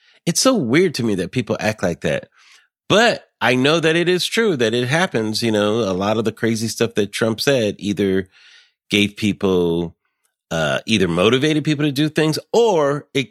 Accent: American